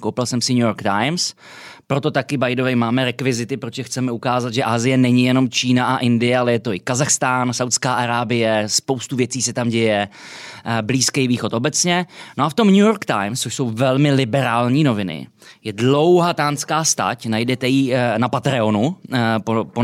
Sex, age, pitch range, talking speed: male, 20-39, 120-160 Hz, 170 wpm